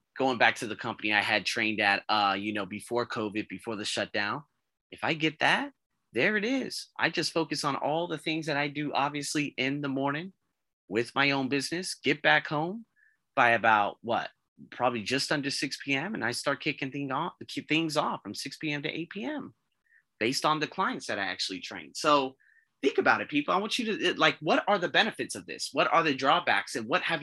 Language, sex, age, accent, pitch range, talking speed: English, male, 30-49, American, 125-180 Hz, 215 wpm